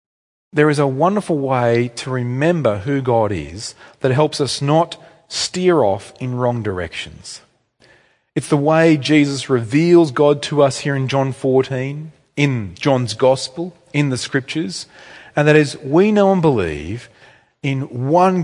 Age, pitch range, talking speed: 40-59, 115-150 Hz, 150 wpm